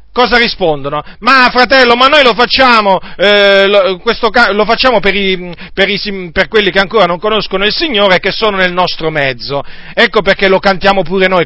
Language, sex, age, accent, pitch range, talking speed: Italian, male, 40-59, native, 185-250 Hz, 195 wpm